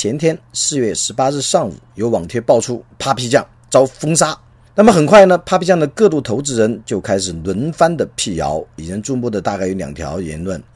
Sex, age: male, 40-59